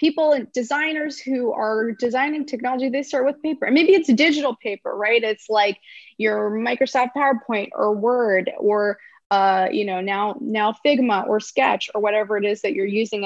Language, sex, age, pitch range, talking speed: English, female, 20-39, 205-245 Hz, 185 wpm